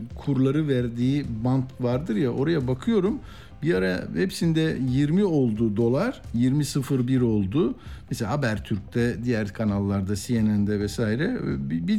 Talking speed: 110 wpm